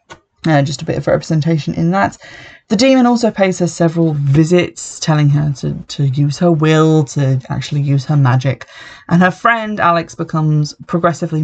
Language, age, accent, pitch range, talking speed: English, 20-39, British, 140-170 Hz, 175 wpm